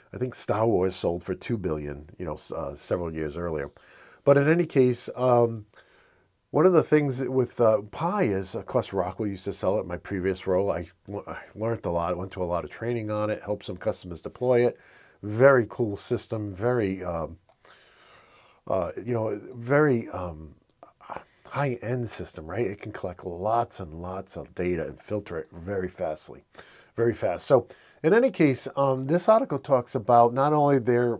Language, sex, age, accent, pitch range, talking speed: English, male, 50-69, American, 95-120 Hz, 185 wpm